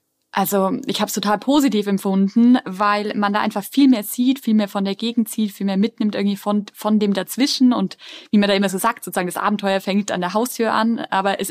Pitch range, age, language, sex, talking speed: 195-225 Hz, 20-39, German, female, 235 wpm